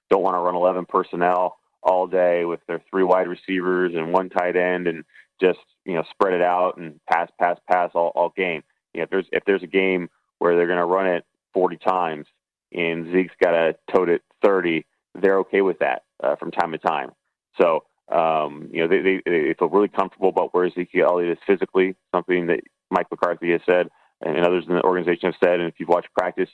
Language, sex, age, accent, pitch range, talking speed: English, male, 20-39, American, 85-95 Hz, 220 wpm